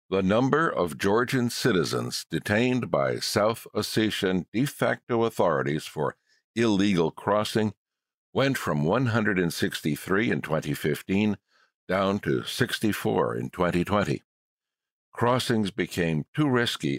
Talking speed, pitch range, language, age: 100 wpm, 75-105 Hz, English, 60-79